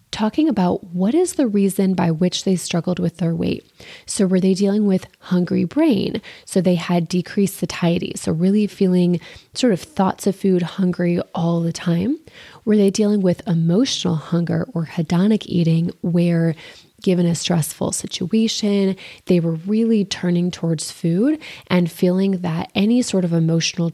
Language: English